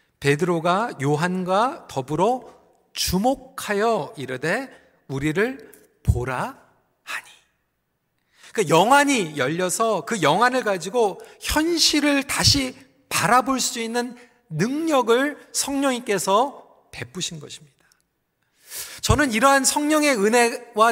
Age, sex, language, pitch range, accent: 40-59, male, Korean, 185-260 Hz, native